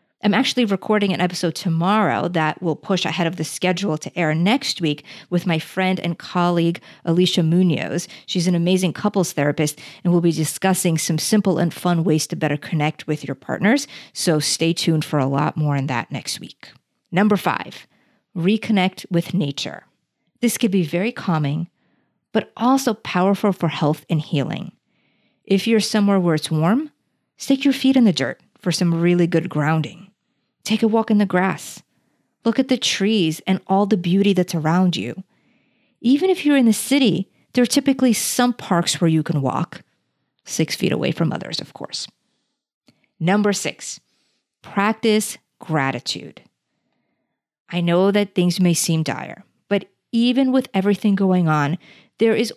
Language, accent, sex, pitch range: English, American, female, 165-215 Hz